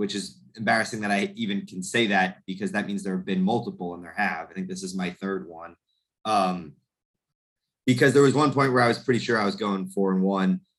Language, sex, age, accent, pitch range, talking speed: English, male, 20-39, American, 95-125 Hz, 240 wpm